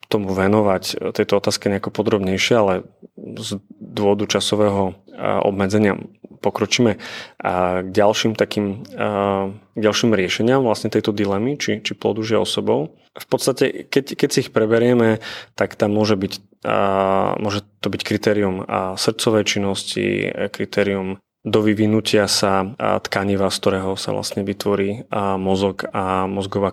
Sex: male